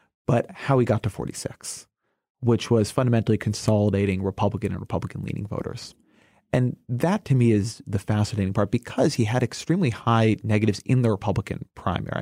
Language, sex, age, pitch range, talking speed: English, male, 30-49, 100-120 Hz, 155 wpm